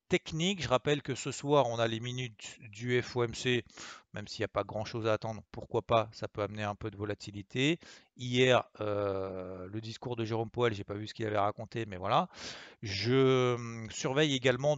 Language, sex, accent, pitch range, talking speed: French, male, French, 110-130 Hz, 200 wpm